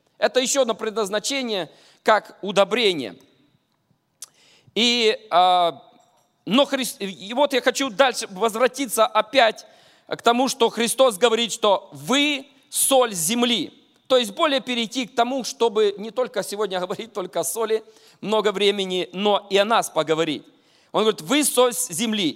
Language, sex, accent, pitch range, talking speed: Russian, male, native, 210-270 Hz, 130 wpm